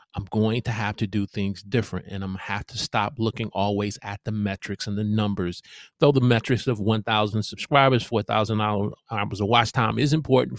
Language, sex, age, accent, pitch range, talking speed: English, male, 30-49, American, 105-120 Hz, 205 wpm